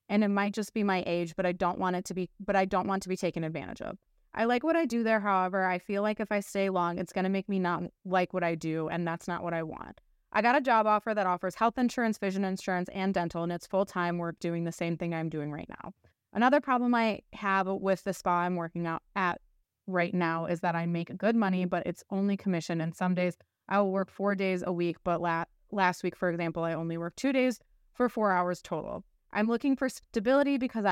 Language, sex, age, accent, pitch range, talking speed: English, female, 20-39, American, 170-200 Hz, 255 wpm